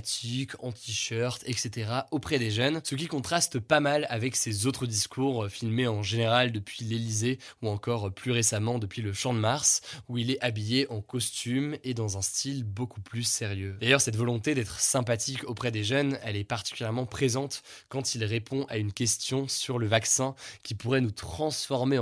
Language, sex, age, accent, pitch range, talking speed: French, male, 20-39, French, 115-135 Hz, 185 wpm